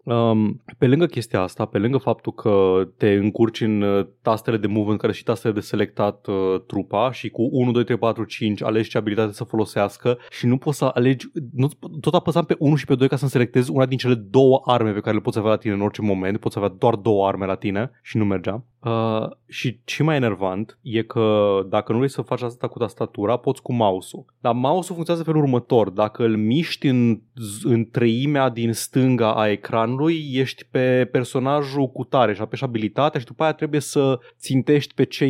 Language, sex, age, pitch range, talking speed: Romanian, male, 20-39, 110-135 Hz, 215 wpm